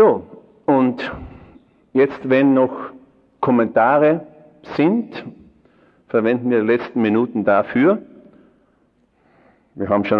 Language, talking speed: German, 95 wpm